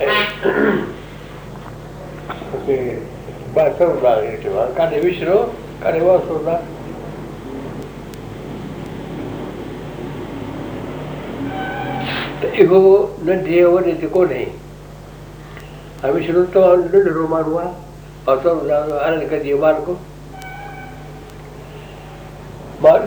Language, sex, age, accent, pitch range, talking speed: Hindi, male, 60-79, native, 150-195 Hz, 75 wpm